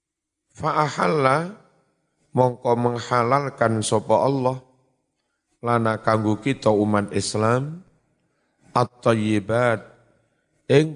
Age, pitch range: 50-69, 110-145 Hz